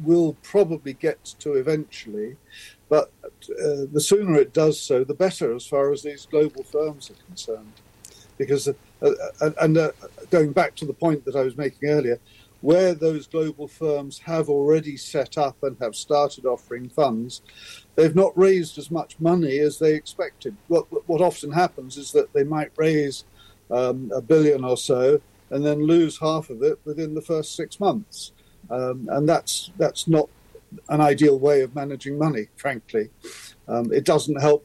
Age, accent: 50-69, British